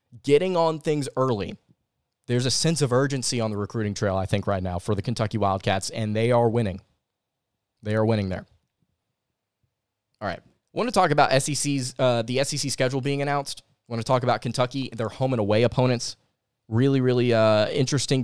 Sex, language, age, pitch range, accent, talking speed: male, English, 20-39, 115-140 Hz, American, 190 wpm